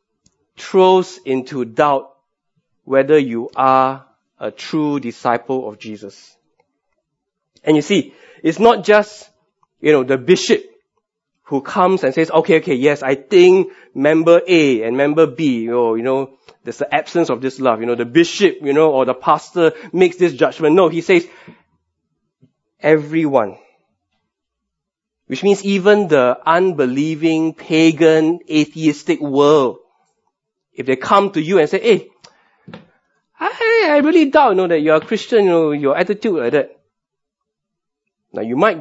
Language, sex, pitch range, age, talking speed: English, male, 130-185 Hz, 20-39, 145 wpm